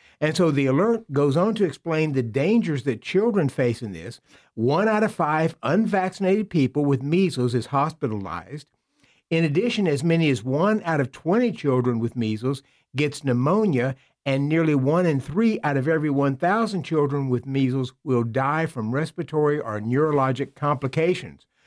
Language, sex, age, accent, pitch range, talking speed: English, male, 50-69, American, 135-180 Hz, 160 wpm